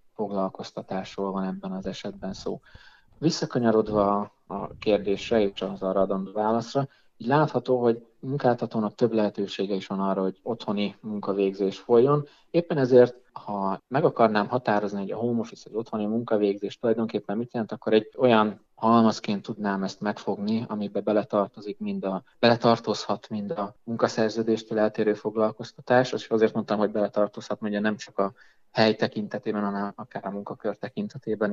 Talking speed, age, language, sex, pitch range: 145 wpm, 20-39, Hungarian, male, 100-115 Hz